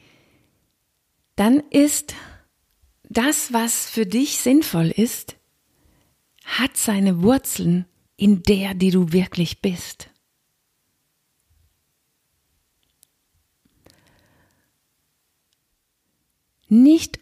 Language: German